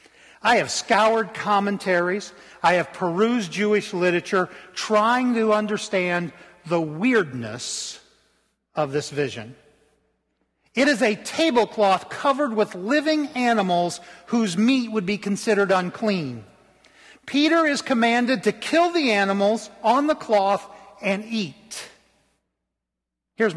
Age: 50-69